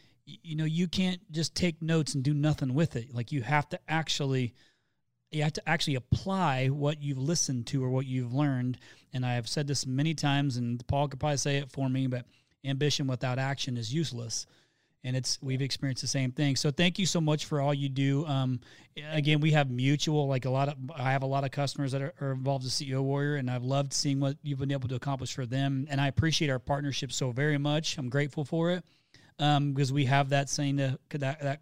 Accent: American